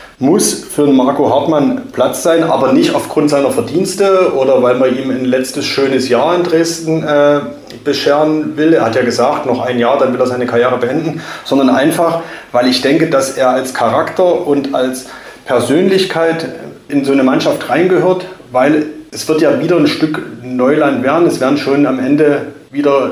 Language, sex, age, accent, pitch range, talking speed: German, male, 30-49, German, 125-155 Hz, 180 wpm